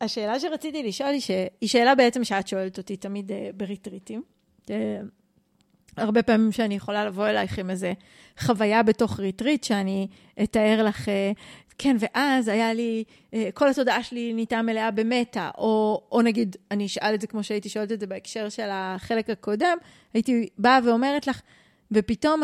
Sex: female